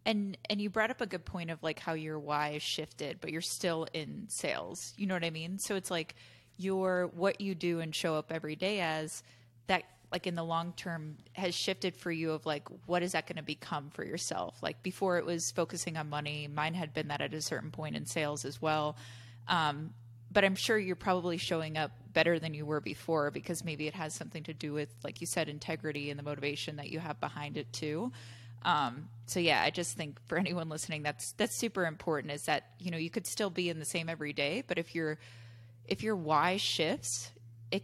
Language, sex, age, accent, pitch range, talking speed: English, female, 20-39, American, 145-175 Hz, 230 wpm